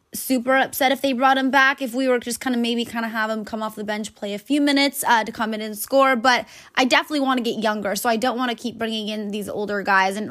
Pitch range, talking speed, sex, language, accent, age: 215-255 Hz, 295 wpm, female, English, American, 20-39